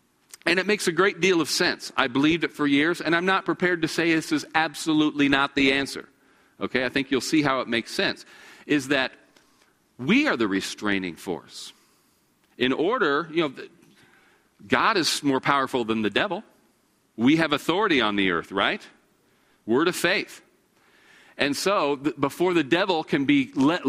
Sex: male